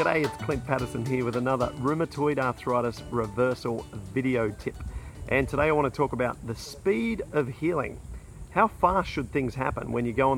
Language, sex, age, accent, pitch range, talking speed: English, male, 40-59, Australian, 120-140 Hz, 180 wpm